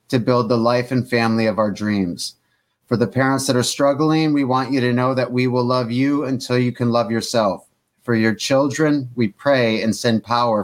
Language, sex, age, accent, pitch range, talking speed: English, male, 30-49, American, 115-135 Hz, 215 wpm